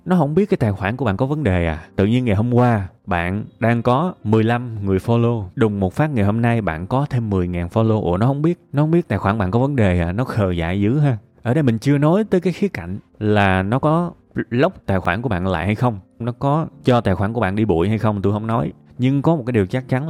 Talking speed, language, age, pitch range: 280 wpm, Vietnamese, 20-39, 100-140 Hz